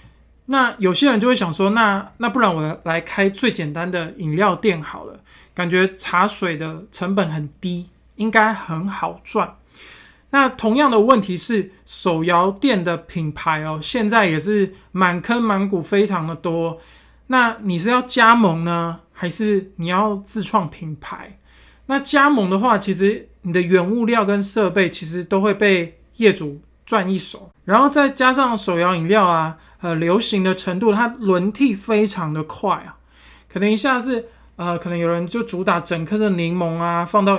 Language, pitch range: Chinese, 170-220 Hz